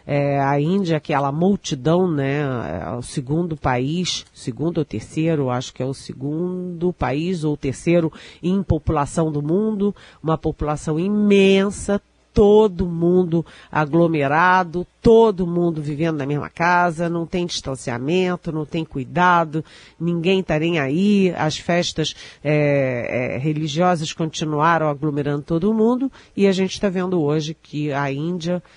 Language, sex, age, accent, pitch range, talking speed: Portuguese, female, 40-59, Brazilian, 150-185 Hz, 125 wpm